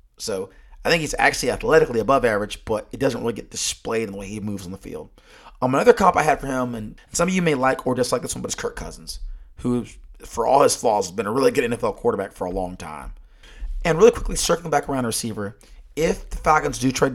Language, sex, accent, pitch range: English, male, American, 105-140 Hz